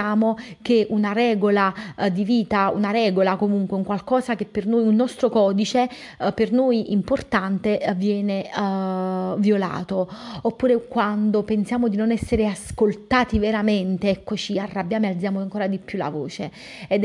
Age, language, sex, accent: 30-49, Italian, female, native